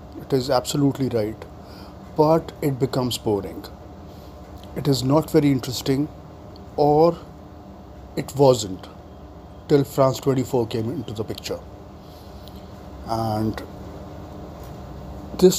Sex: male